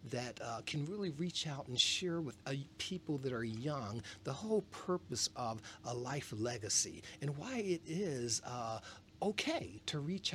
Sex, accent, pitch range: male, American, 110-140 Hz